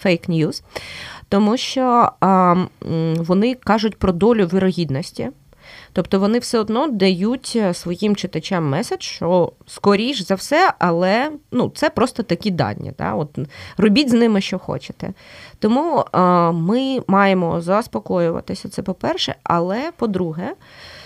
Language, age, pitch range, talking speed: Ukrainian, 20-39, 170-215 Hz, 125 wpm